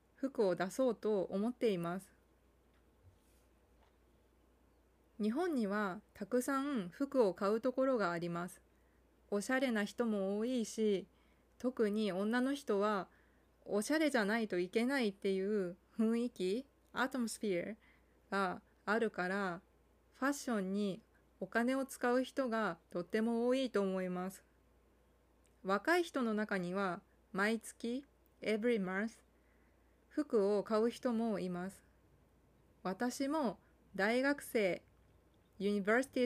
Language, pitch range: Japanese, 190-245 Hz